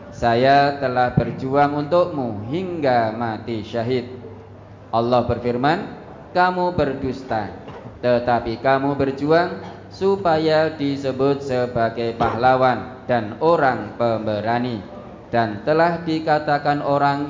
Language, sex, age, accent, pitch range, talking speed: Indonesian, male, 20-39, native, 115-145 Hz, 85 wpm